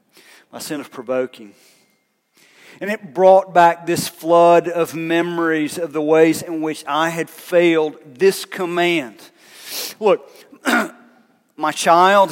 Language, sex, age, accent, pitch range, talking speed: English, male, 40-59, American, 125-165 Hz, 120 wpm